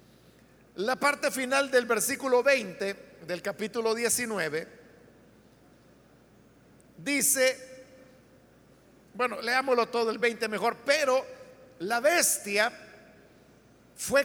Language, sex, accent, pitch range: Spanish, male, Mexican, 220-270 Hz